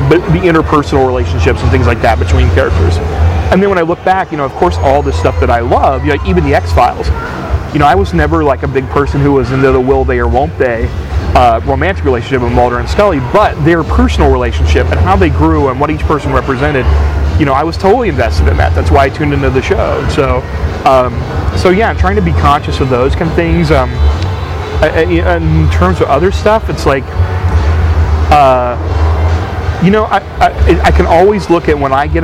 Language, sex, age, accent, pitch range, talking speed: English, male, 30-49, American, 80-115 Hz, 220 wpm